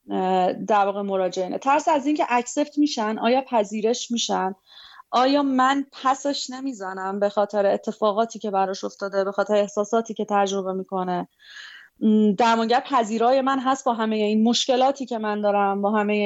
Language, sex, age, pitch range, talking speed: Persian, female, 30-49, 210-265 Hz, 155 wpm